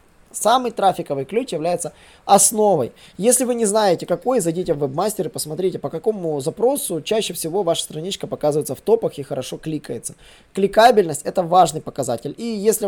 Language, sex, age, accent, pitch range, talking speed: Russian, male, 20-39, native, 150-205 Hz, 165 wpm